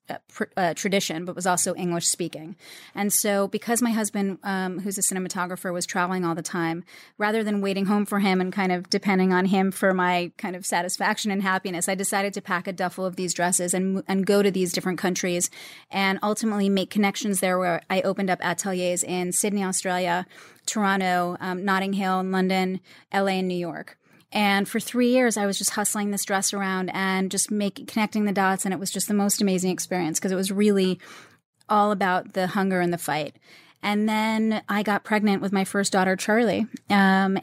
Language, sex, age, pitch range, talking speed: English, female, 30-49, 180-200 Hz, 205 wpm